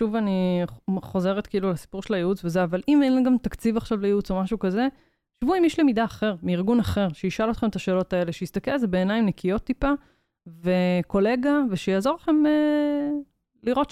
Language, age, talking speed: Hebrew, 20-39, 175 wpm